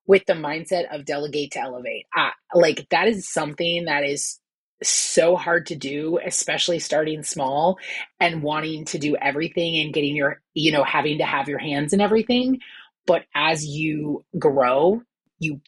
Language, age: English, 30-49